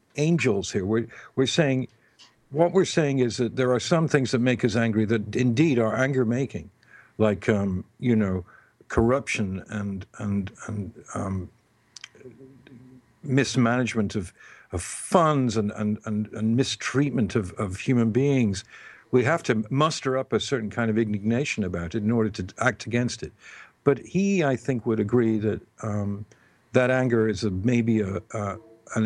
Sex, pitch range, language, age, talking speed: male, 105-130 Hz, English, 60-79, 165 wpm